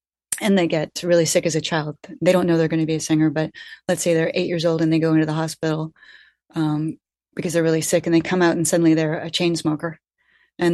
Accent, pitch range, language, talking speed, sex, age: American, 155-180 Hz, English, 255 wpm, female, 30-49